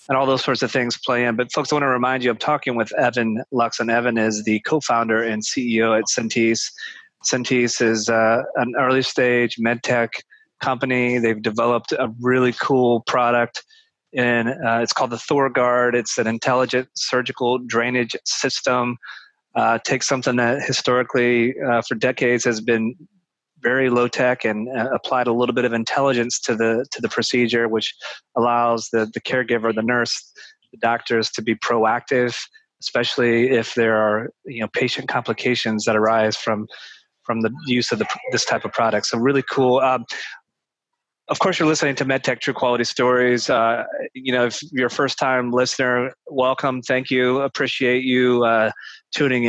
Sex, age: male, 30-49